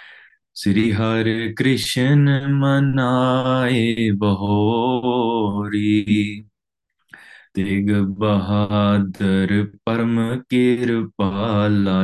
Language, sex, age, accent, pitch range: English, male, 20-39, Indian, 100-120 Hz